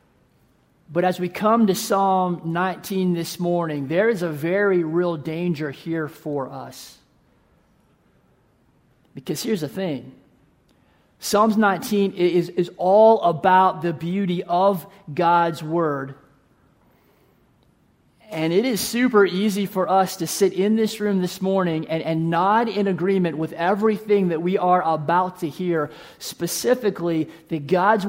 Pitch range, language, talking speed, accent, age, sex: 165-195 Hz, English, 135 wpm, American, 40-59, male